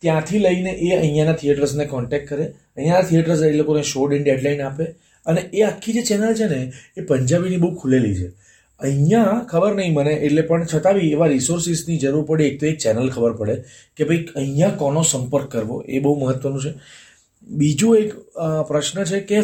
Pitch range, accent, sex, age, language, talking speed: 120-160 Hz, native, male, 30-49, Gujarati, 150 wpm